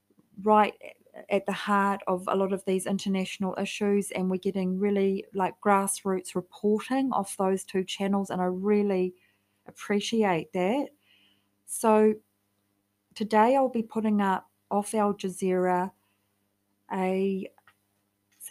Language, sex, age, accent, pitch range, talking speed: English, female, 40-59, Australian, 175-200 Hz, 125 wpm